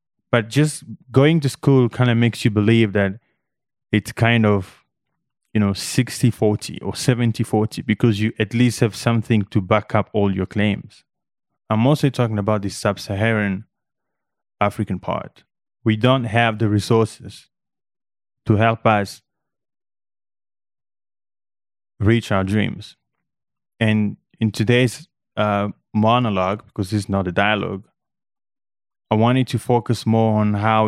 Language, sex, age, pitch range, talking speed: English, male, 20-39, 100-115 Hz, 130 wpm